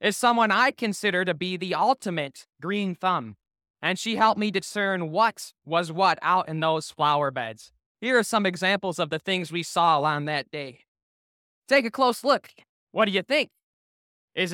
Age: 20-39